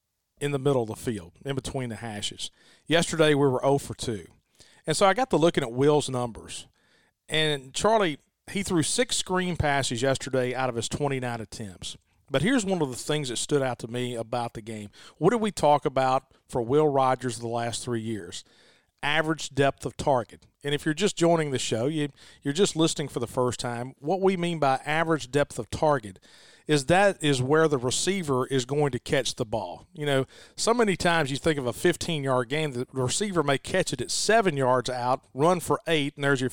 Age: 40-59